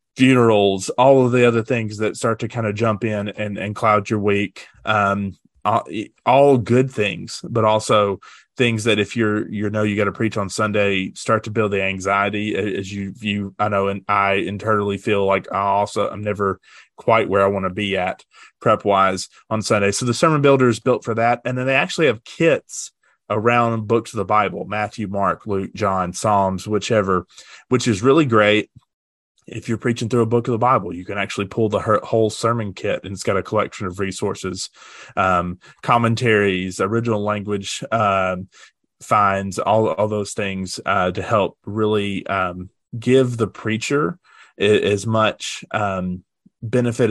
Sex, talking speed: male, 180 wpm